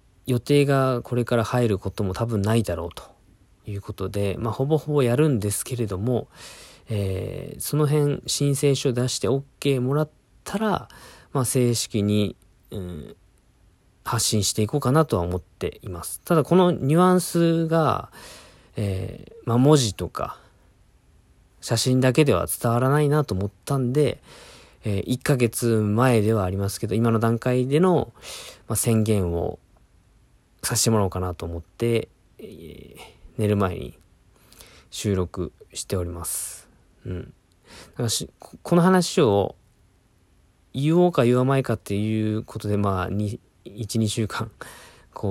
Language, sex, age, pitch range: Japanese, male, 40-59, 95-125 Hz